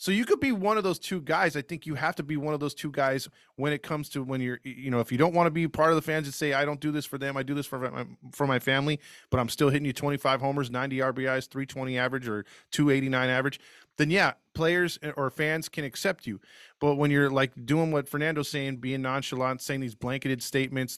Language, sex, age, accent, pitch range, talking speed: English, male, 20-39, American, 125-150 Hz, 255 wpm